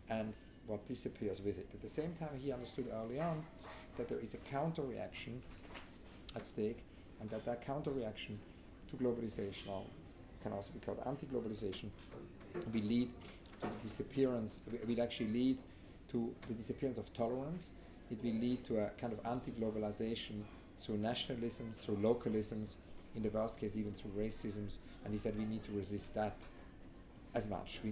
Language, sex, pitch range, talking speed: English, male, 105-120 Hz, 165 wpm